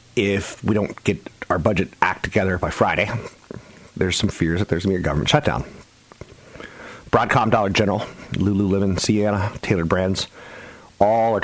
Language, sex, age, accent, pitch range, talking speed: English, male, 40-59, American, 80-105 Hz, 155 wpm